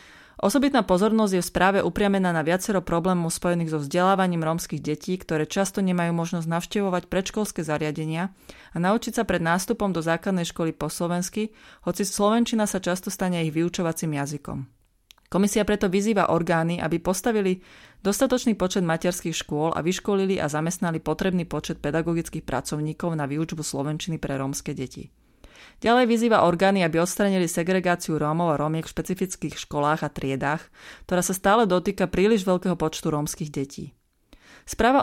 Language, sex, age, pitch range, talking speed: Slovak, female, 30-49, 155-195 Hz, 150 wpm